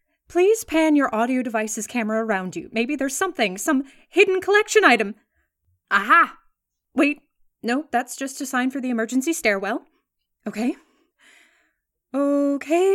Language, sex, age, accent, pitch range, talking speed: English, female, 20-39, American, 235-335 Hz, 130 wpm